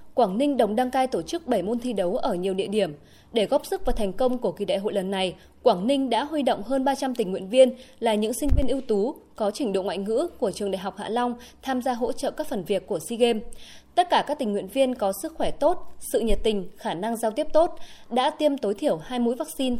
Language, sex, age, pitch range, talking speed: Vietnamese, female, 20-39, 200-270 Hz, 270 wpm